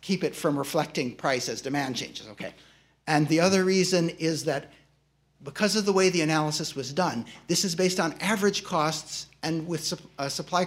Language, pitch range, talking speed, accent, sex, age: English, 145-180 Hz, 190 wpm, American, male, 60-79